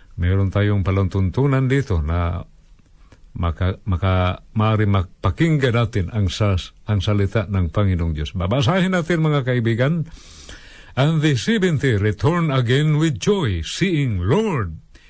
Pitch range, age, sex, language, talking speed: 105-160 Hz, 50-69, male, Filipino, 105 wpm